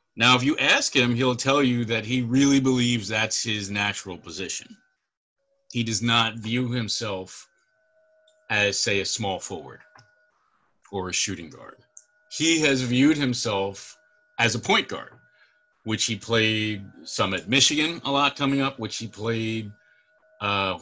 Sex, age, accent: male, 30-49, American